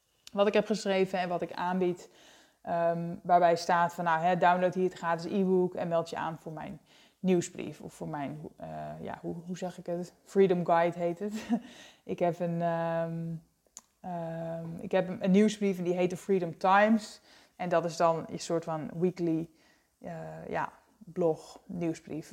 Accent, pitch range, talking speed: Dutch, 170-200 Hz, 185 wpm